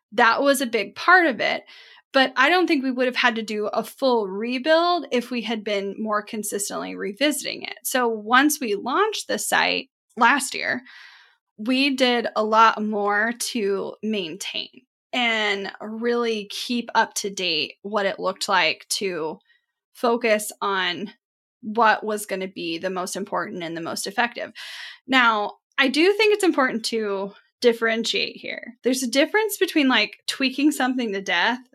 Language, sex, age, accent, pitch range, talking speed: English, female, 10-29, American, 210-260 Hz, 165 wpm